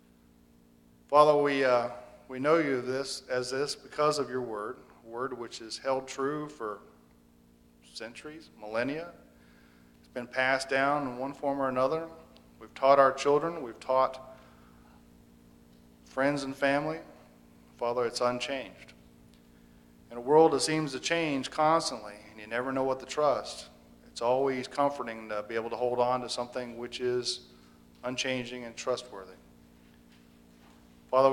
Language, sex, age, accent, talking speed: English, male, 40-59, American, 140 wpm